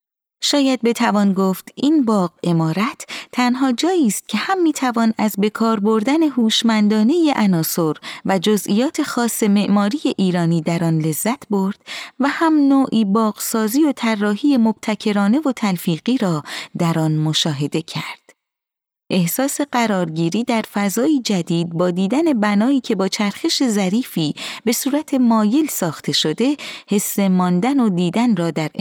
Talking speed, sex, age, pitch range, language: 135 wpm, female, 30-49, 185-240 Hz, Persian